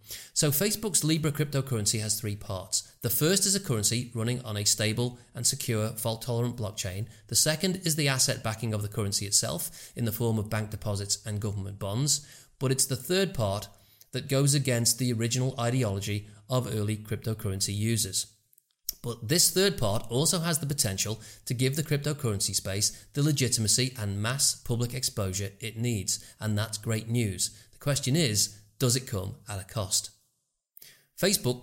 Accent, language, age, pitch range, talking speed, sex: British, English, 30-49, 105-135 Hz, 170 wpm, male